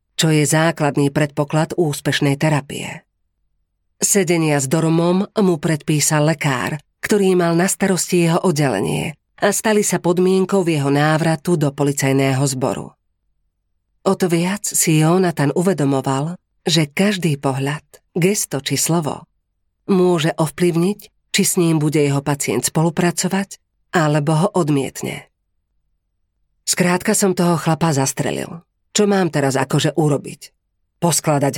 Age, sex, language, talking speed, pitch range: 40-59, female, Slovak, 115 wpm, 140-180 Hz